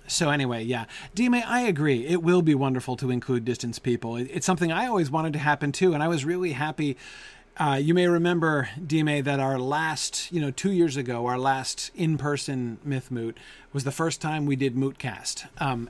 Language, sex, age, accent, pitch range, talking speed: English, male, 30-49, American, 130-175 Hz, 200 wpm